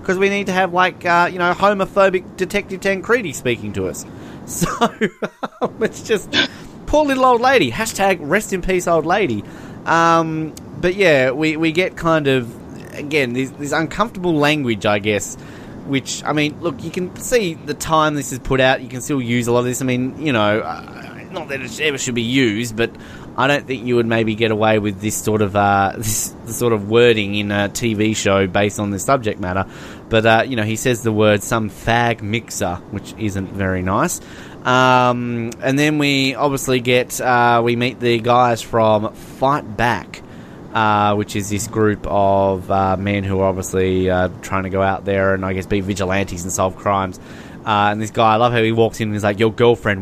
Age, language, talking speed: 20-39, English, 205 wpm